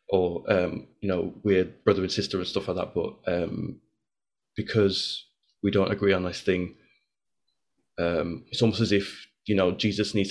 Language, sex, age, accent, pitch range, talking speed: English, male, 20-39, British, 95-105 Hz, 175 wpm